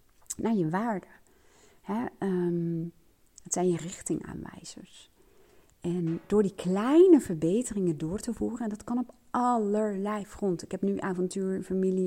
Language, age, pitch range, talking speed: Dutch, 30-49, 165-190 Hz, 135 wpm